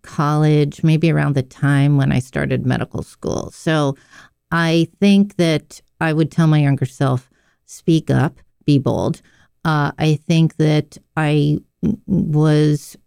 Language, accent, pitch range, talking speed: English, American, 145-185 Hz, 140 wpm